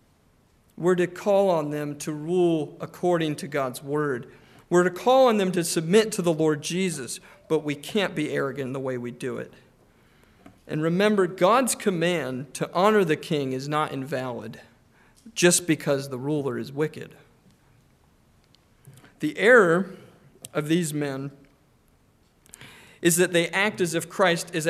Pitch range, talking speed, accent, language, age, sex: 145-195 Hz, 155 wpm, American, English, 40-59, male